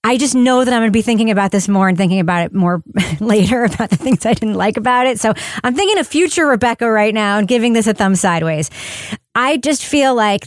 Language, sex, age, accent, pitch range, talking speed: English, female, 30-49, American, 180-230 Hz, 250 wpm